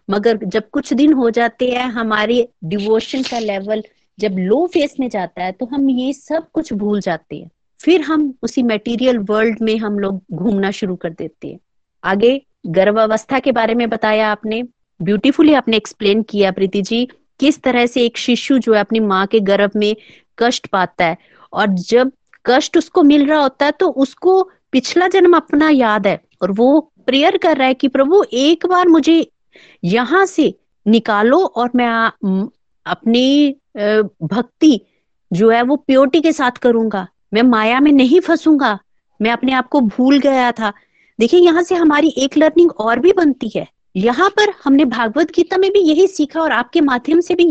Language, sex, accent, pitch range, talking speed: Hindi, female, native, 215-295 Hz, 180 wpm